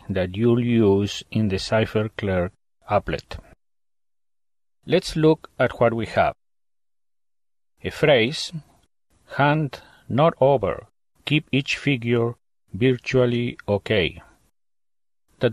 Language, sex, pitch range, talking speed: English, male, 110-135 Hz, 95 wpm